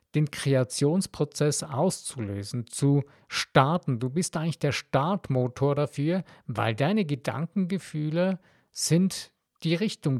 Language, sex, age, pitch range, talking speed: German, male, 50-69, 125-155 Hz, 100 wpm